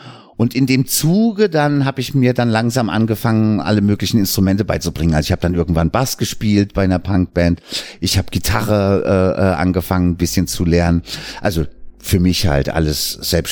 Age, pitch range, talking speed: 50-69, 90-115 Hz, 180 wpm